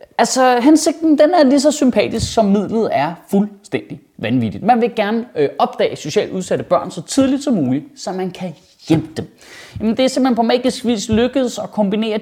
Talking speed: 190 wpm